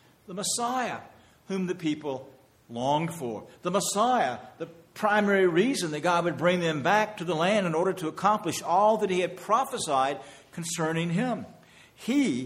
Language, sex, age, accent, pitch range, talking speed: English, male, 50-69, American, 130-180 Hz, 160 wpm